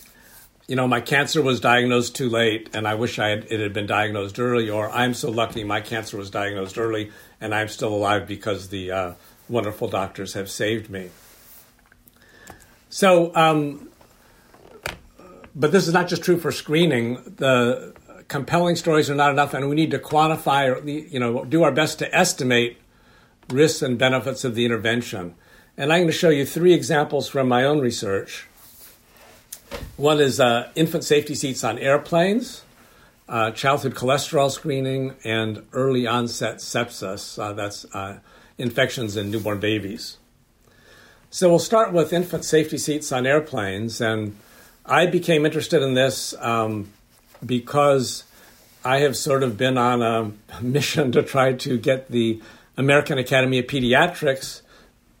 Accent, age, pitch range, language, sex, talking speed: American, 60-79, 110-145 Hz, English, male, 150 wpm